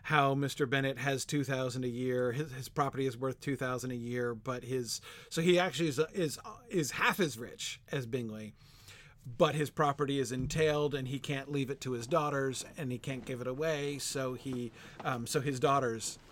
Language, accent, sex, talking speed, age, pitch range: English, American, male, 200 wpm, 40-59, 120-145 Hz